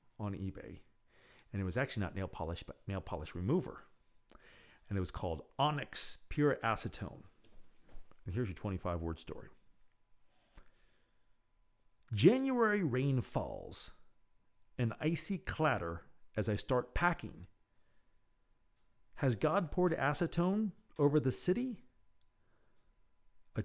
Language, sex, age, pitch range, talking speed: English, male, 50-69, 100-145 Hz, 110 wpm